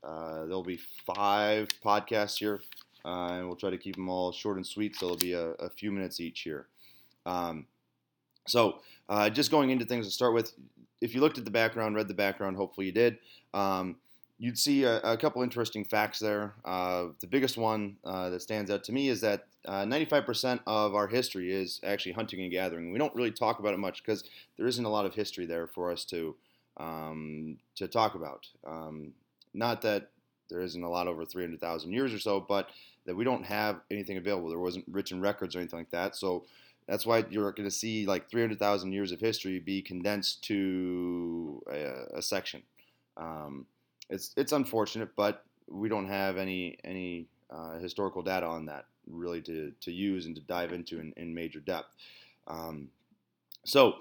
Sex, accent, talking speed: male, American, 195 wpm